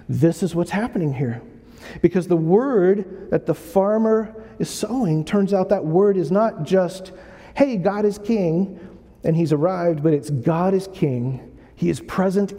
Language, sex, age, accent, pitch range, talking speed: English, male, 50-69, American, 140-190 Hz, 165 wpm